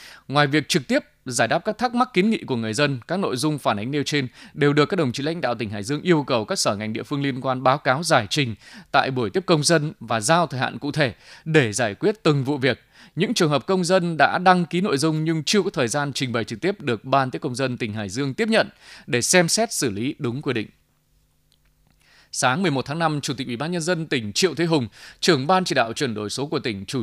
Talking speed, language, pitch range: 270 wpm, Vietnamese, 120-165 Hz